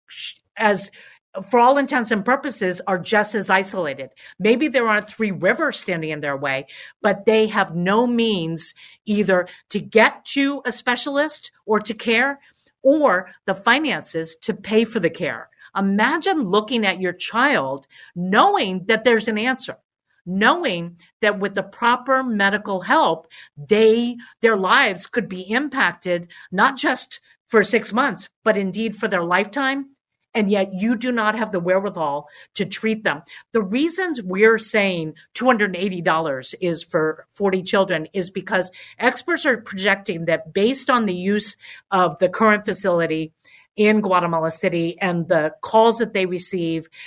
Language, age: English, 50-69